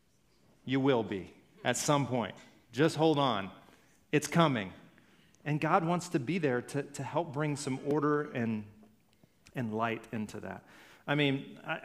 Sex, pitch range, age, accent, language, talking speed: male, 130-165 Hz, 40-59, American, English, 155 wpm